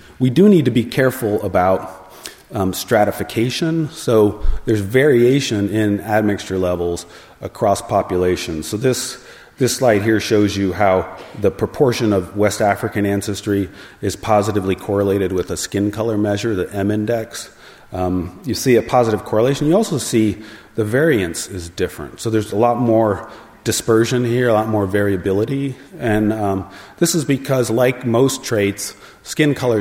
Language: English